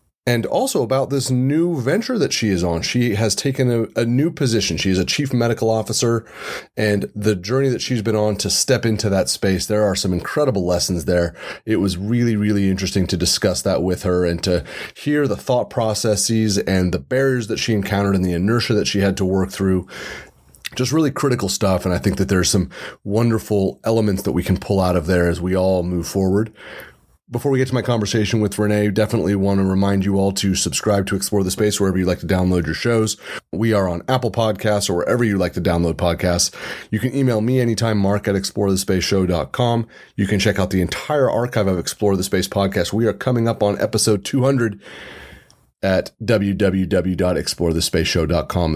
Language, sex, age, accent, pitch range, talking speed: English, male, 30-49, American, 95-115 Hz, 205 wpm